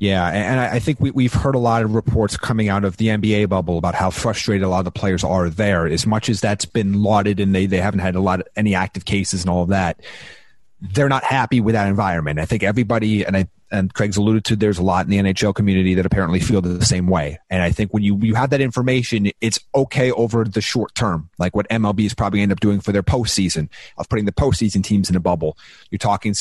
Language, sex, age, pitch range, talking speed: English, male, 30-49, 95-120 Hz, 255 wpm